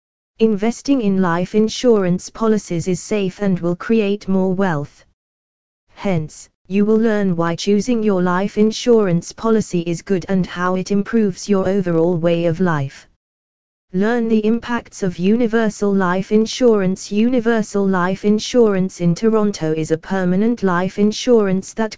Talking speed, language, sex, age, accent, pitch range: 140 wpm, English, female, 20-39, British, 170-210 Hz